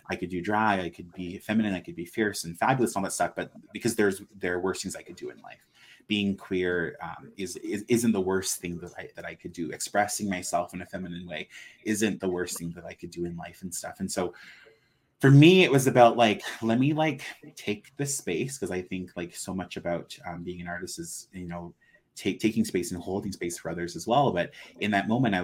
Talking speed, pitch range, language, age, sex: 250 wpm, 85-105 Hz, English, 30-49, male